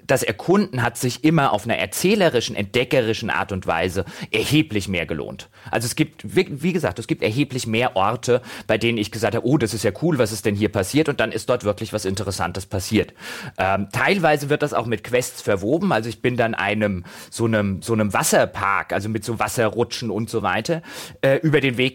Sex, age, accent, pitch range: male, 30-49, German, 110-150 Hz